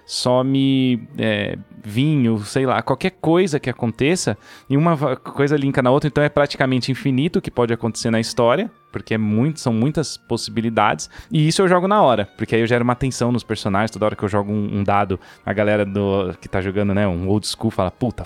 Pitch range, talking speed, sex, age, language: 110-140 Hz, 210 wpm, male, 20-39, Portuguese